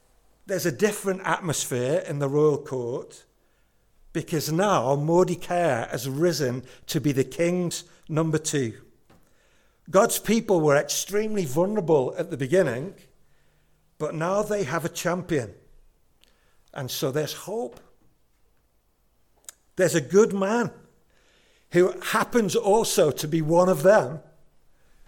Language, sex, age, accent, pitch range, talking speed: English, male, 60-79, British, 145-185 Hz, 115 wpm